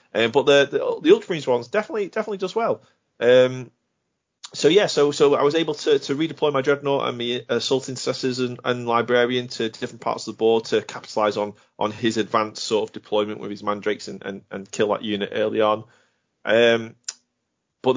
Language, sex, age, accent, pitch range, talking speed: English, male, 30-49, British, 105-130 Hz, 195 wpm